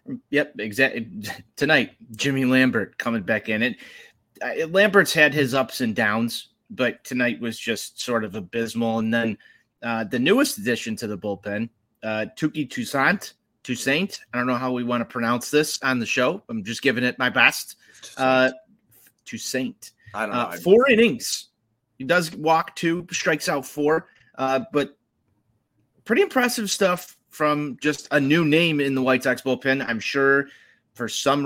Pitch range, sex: 115-150 Hz, male